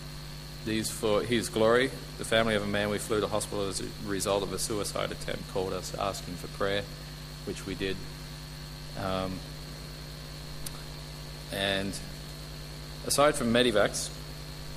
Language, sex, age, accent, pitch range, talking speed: English, male, 30-49, Australian, 105-150 Hz, 140 wpm